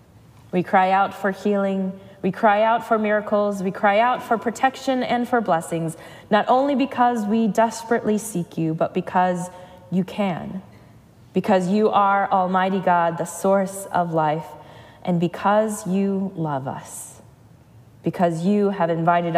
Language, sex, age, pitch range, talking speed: English, female, 20-39, 160-205 Hz, 145 wpm